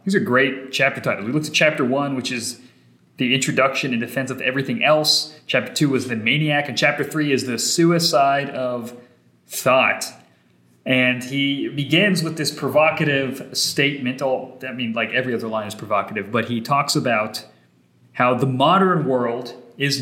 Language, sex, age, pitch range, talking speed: English, male, 30-49, 120-145 Hz, 170 wpm